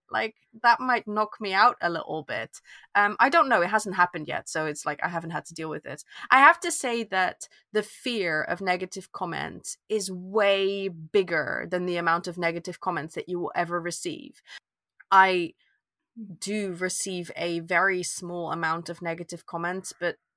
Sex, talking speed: female, 185 wpm